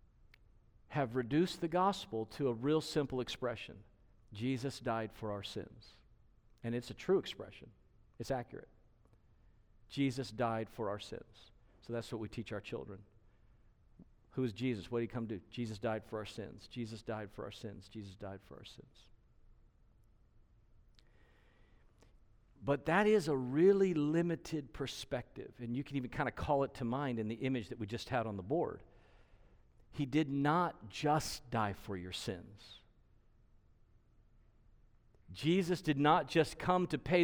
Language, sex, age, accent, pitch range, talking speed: English, male, 50-69, American, 110-170 Hz, 160 wpm